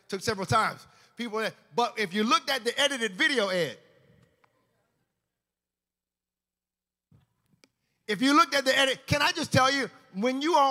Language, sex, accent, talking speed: English, male, American, 150 wpm